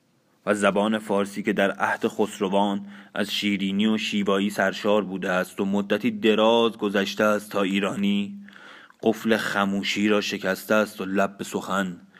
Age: 30-49